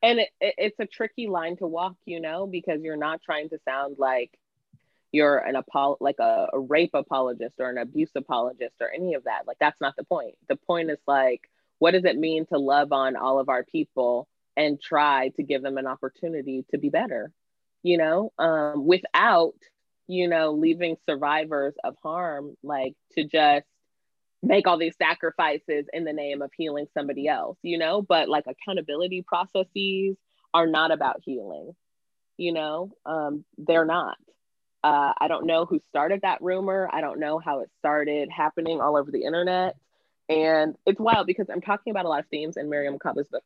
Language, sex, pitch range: English, female, 145-185 Hz